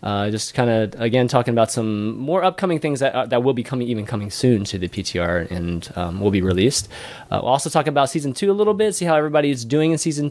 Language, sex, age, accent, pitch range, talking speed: English, male, 20-39, American, 105-155 Hz, 260 wpm